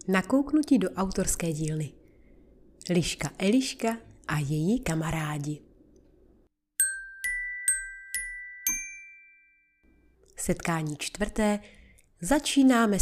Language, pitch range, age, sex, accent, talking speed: Czech, 165-255 Hz, 30-49, female, native, 55 wpm